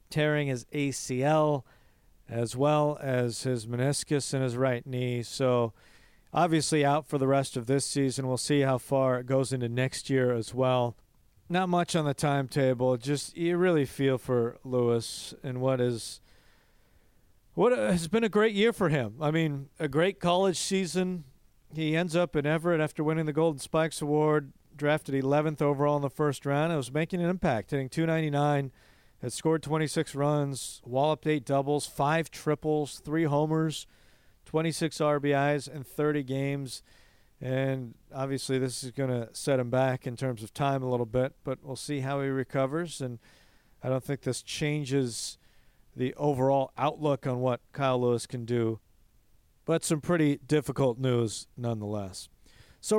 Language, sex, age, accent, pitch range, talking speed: English, male, 40-59, American, 130-155 Hz, 165 wpm